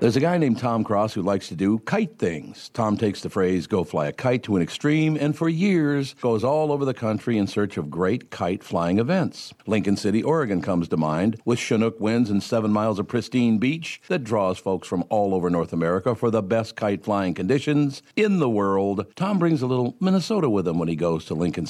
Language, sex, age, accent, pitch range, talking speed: English, male, 60-79, American, 100-125 Hz, 225 wpm